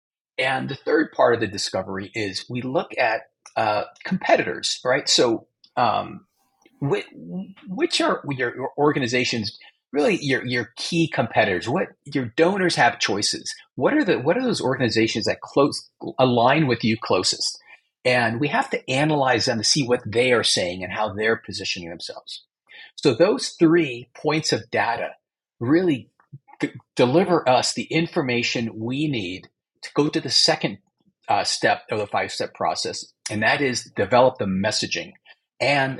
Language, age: English, 40-59